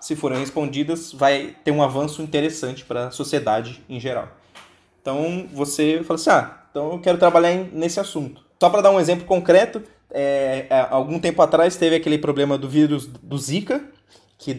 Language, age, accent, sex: Portuguese, 20-39, Brazilian, male